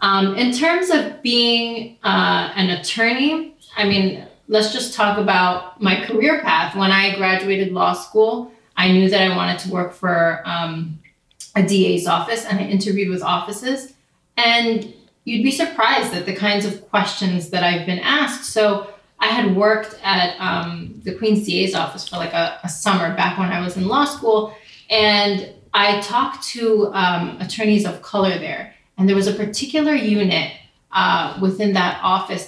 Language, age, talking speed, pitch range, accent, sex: English, 30-49, 170 wpm, 180-215 Hz, American, female